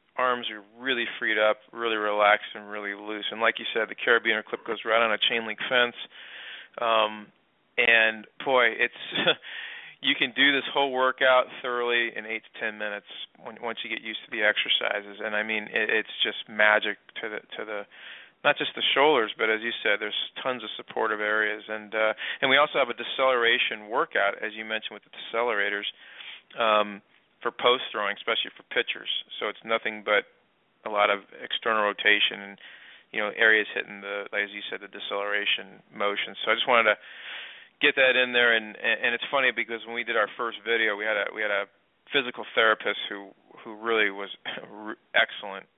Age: 40-59